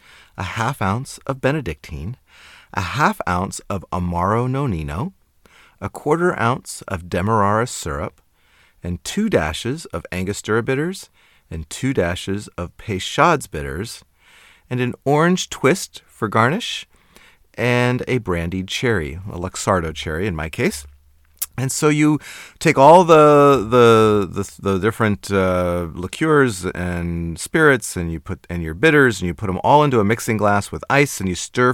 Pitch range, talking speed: 90-130 Hz, 150 wpm